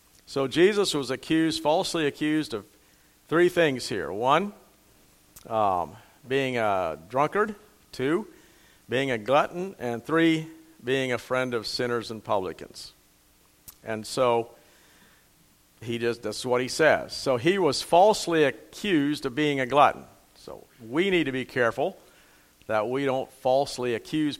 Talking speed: 140 wpm